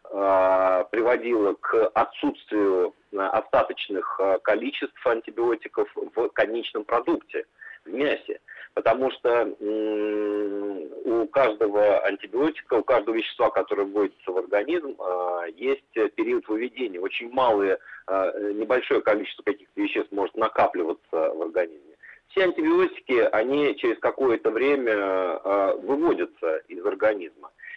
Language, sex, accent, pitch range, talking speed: Russian, male, native, 290-440 Hz, 95 wpm